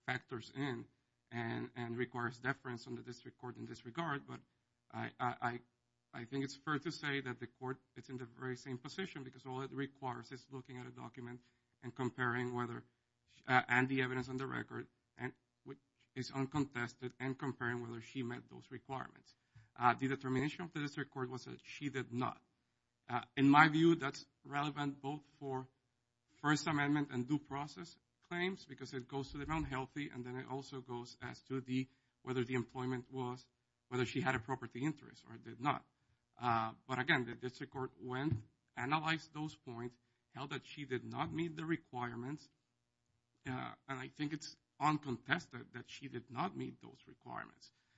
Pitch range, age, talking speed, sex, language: 120-140 Hz, 50-69, 180 wpm, male, English